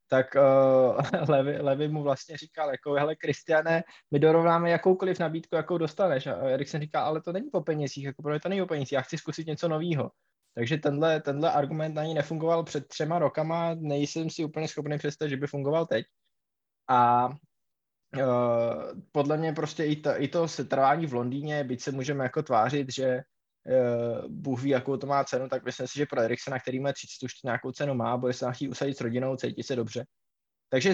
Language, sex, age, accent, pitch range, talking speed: Czech, male, 20-39, native, 135-160 Hz, 190 wpm